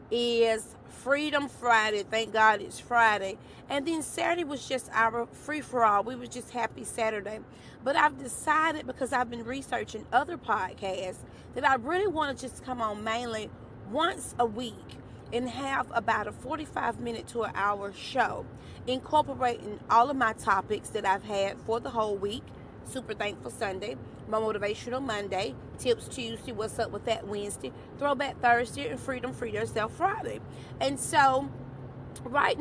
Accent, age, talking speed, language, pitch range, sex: American, 30-49, 160 wpm, English, 205-265 Hz, female